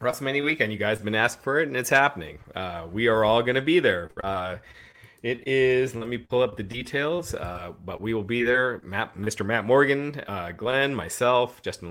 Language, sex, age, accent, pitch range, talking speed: English, male, 30-49, American, 95-115 Hz, 220 wpm